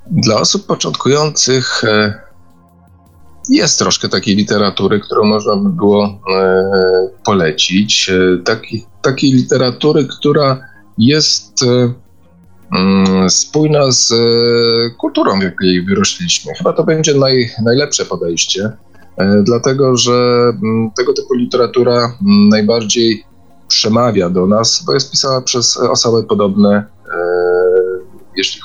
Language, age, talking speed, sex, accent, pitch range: Polish, 30-49, 95 wpm, male, native, 90-125 Hz